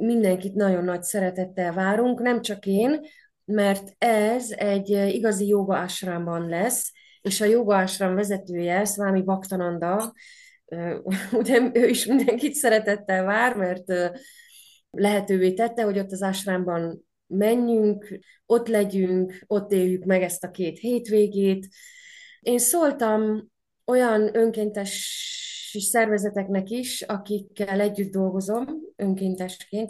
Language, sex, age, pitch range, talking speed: Hungarian, female, 20-39, 185-225 Hz, 110 wpm